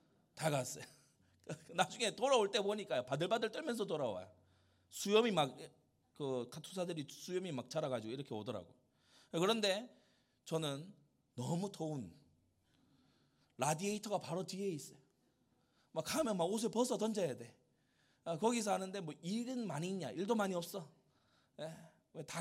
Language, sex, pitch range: Korean, male, 130-200 Hz